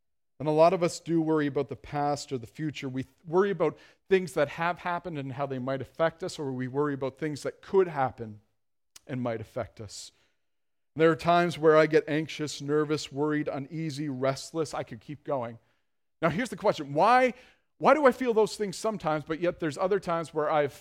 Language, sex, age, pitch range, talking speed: English, male, 40-59, 130-175 Hz, 210 wpm